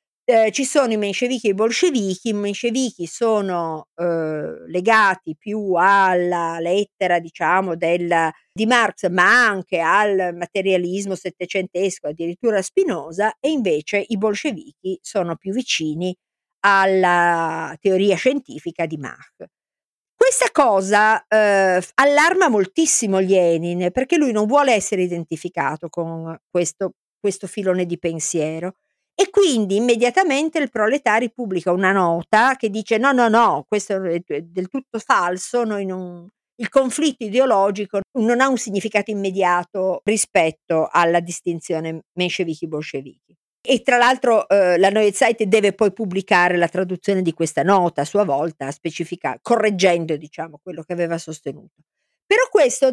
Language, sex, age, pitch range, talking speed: Italian, female, 50-69, 175-230 Hz, 130 wpm